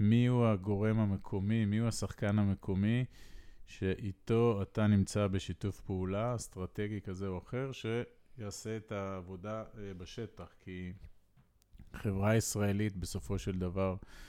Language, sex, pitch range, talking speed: Hebrew, male, 95-110 Hz, 115 wpm